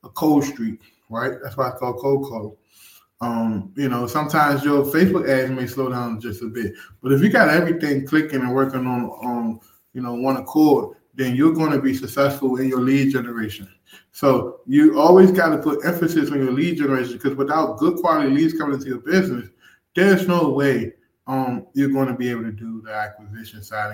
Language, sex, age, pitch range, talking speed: English, male, 20-39, 115-145 Hz, 200 wpm